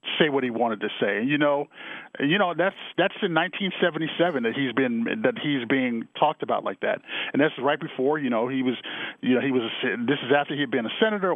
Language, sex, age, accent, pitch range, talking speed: English, male, 50-69, American, 125-155 Hz, 230 wpm